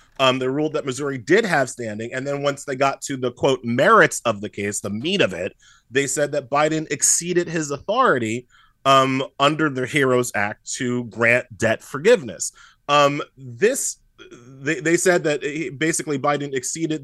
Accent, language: American, English